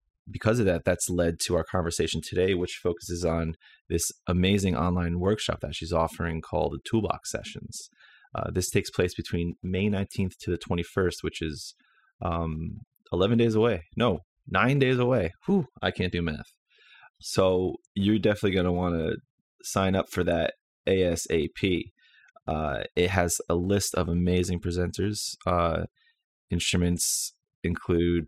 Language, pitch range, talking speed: English, 85-95 Hz, 150 wpm